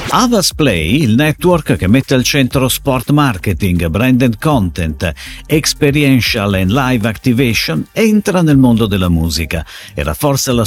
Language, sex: Italian, male